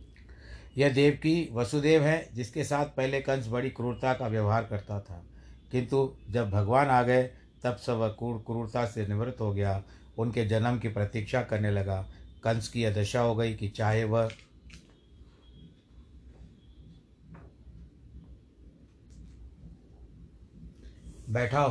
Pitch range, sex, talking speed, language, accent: 105-125 Hz, male, 125 wpm, Hindi, native